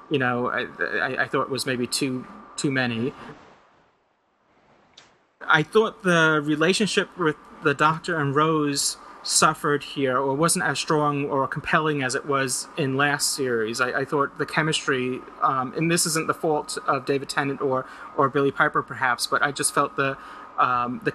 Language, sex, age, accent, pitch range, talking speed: English, male, 30-49, American, 130-150 Hz, 175 wpm